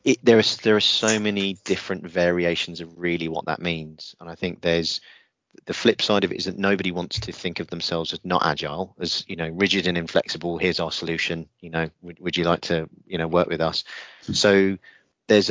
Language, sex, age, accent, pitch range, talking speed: English, male, 30-49, British, 80-90 Hz, 215 wpm